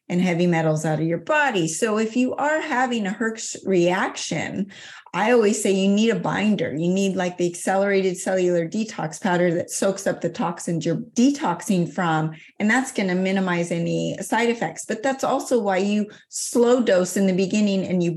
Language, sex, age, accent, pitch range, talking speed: English, female, 30-49, American, 180-235 Hz, 190 wpm